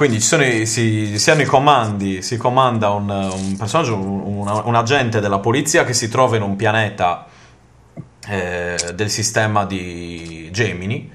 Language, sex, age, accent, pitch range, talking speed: Italian, male, 30-49, native, 95-120 Hz, 165 wpm